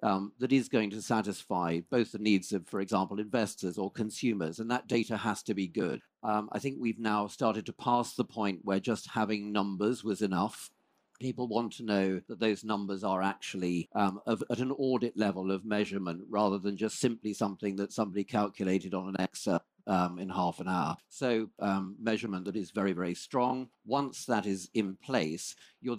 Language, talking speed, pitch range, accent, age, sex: English, 195 wpm, 95-115 Hz, British, 40-59, male